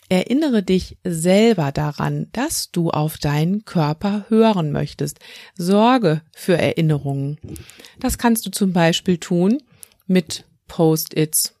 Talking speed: 115 wpm